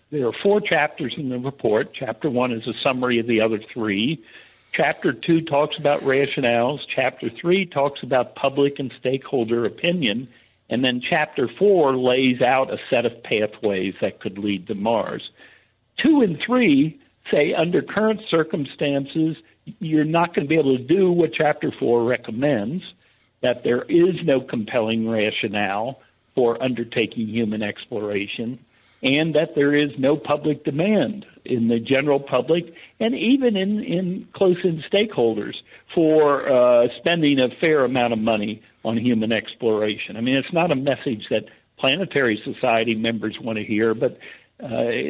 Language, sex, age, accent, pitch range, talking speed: English, male, 60-79, American, 115-160 Hz, 155 wpm